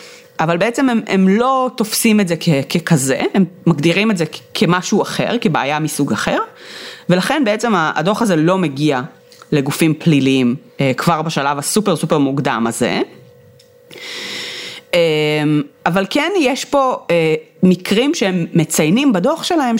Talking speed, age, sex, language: 125 wpm, 30-49, female, Hebrew